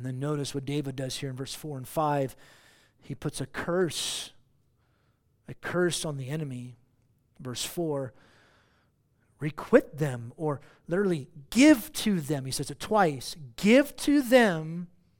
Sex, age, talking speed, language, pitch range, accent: male, 40-59, 145 wpm, English, 130-185 Hz, American